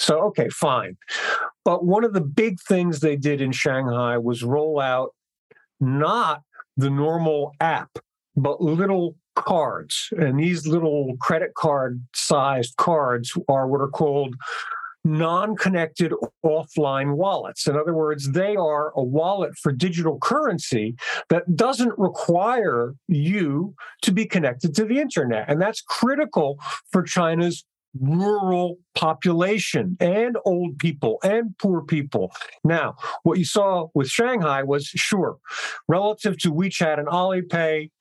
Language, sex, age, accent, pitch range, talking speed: English, male, 50-69, American, 145-185 Hz, 130 wpm